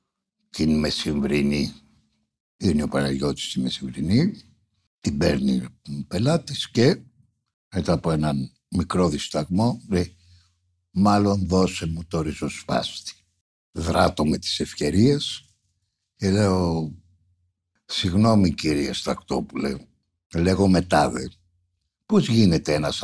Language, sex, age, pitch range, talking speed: Greek, male, 60-79, 75-95 Hz, 100 wpm